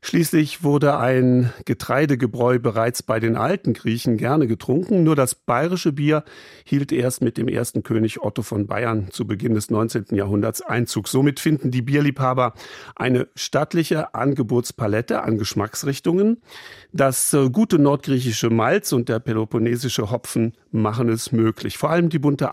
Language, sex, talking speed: German, male, 145 wpm